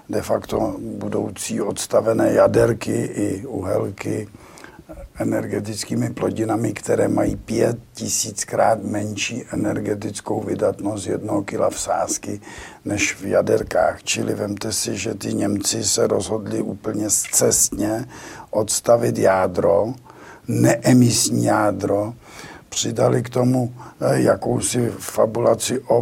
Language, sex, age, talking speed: Czech, male, 50-69, 95 wpm